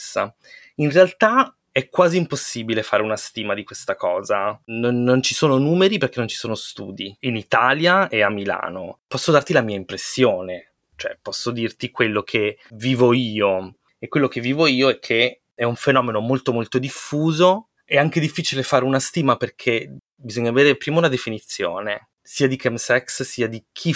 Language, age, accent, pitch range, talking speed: Italian, 20-39, native, 110-135 Hz, 175 wpm